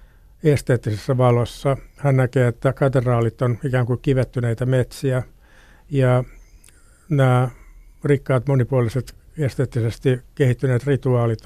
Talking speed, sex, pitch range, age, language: 95 wpm, male, 120-135 Hz, 60-79, Finnish